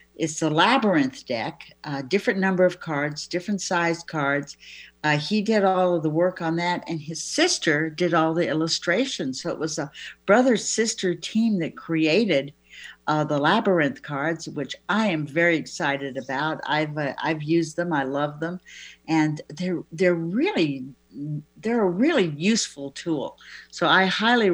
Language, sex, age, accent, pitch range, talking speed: English, female, 60-79, American, 150-200 Hz, 165 wpm